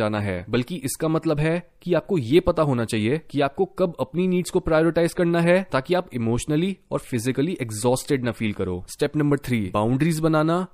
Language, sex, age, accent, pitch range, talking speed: Hindi, male, 20-39, native, 125-170 Hz, 195 wpm